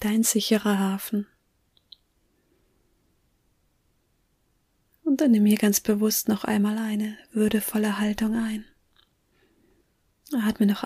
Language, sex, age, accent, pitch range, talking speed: German, female, 20-39, German, 195-225 Hz, 95 wpm